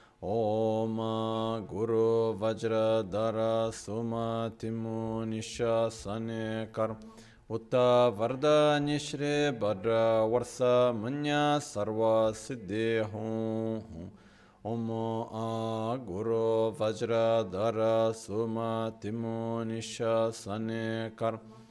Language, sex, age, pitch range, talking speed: Italian, male, 30-49, 110-115 Hz, 55 wpm